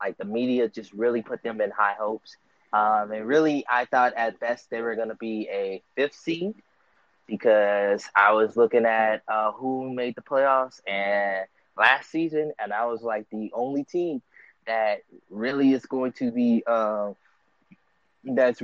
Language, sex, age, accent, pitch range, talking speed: English, male, 20-39, American, 110-130 Hz, 165 wpm